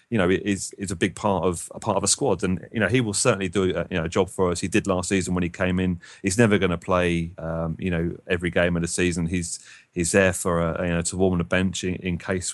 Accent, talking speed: British, 295 wpm